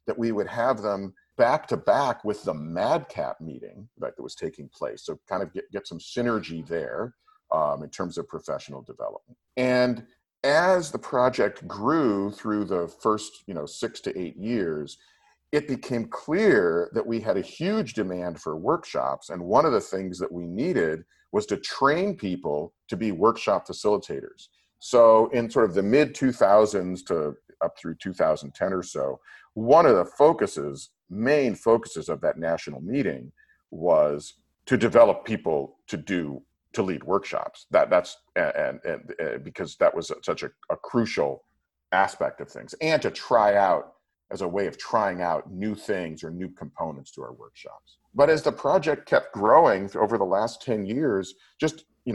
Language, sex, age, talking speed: English, male, 50-69, 170 wpm